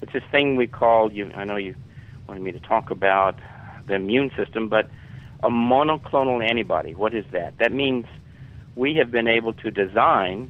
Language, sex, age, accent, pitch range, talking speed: English, male, 50-69, American, 105-125 Hz, 175 wpm